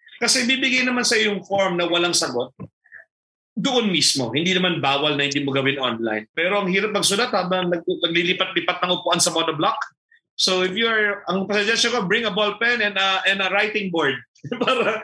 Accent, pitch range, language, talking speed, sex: native, 155-230 Hz, Filipino, 185 wpm, male